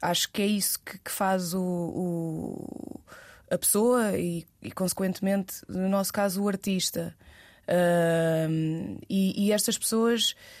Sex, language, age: female, Portuguese, 20-39